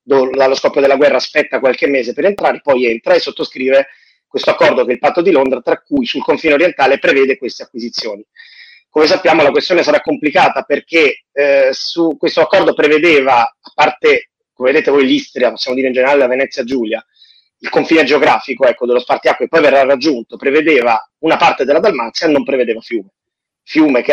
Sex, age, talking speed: male, 30-49, 185 wpm